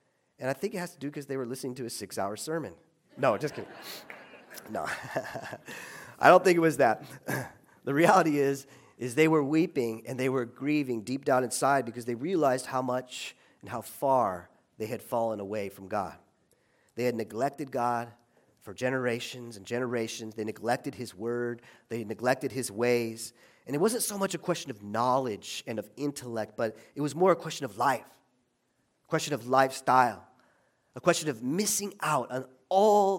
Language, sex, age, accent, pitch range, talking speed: English, male, 40-59, American, 115-150 Hz, 180 wpm